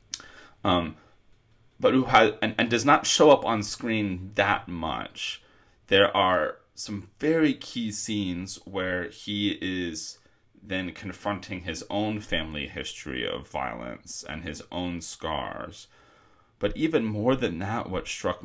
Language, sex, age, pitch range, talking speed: English, male, 30-49, 85-105 Hz, 135 wpm